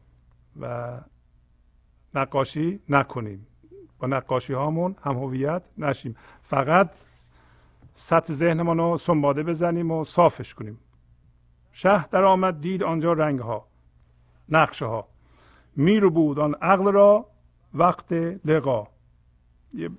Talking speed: 100 wpm